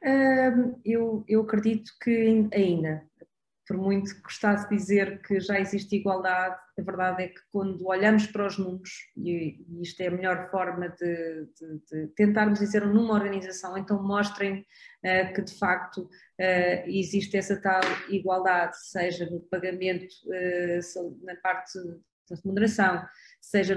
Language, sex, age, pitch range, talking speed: Portuguese, female, 20-39, 185-210 Hz, 135 wpm